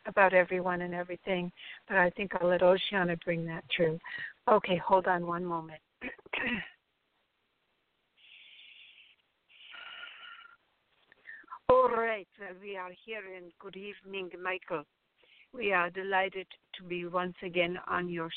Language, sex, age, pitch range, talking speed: English, female, 60-79, 175-205 Hz, 120 wpm